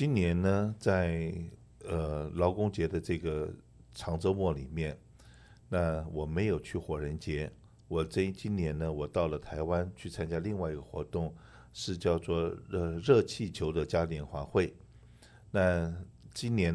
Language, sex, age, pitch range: Chinese, male, 50-69, 80-95 Hz